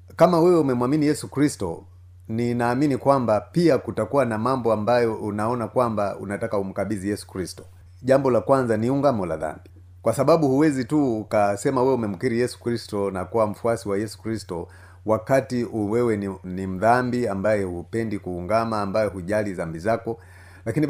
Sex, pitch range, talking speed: male, 95-125 Hz, 150 wpm